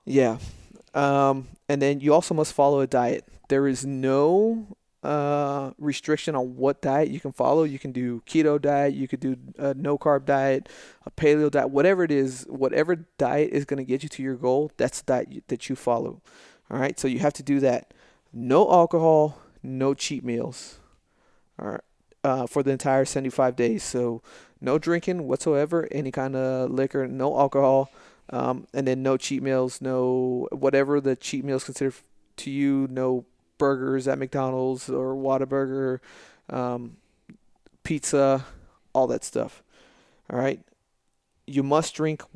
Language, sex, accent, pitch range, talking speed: English, male, American, 130-150 Hz, 165 wpm